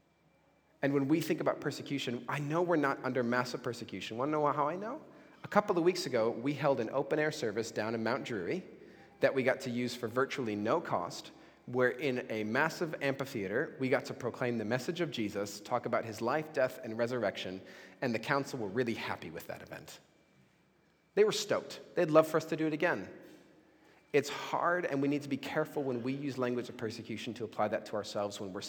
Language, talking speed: English, 215 wpm